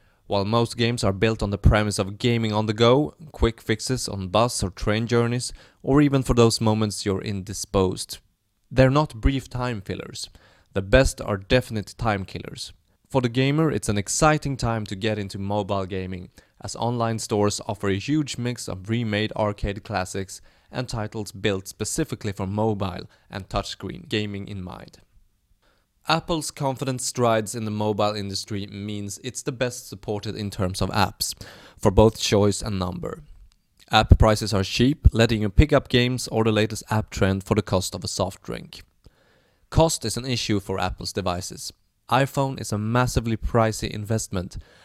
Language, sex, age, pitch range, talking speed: English, male, 20-39, 100-120 Hz, 165 wpm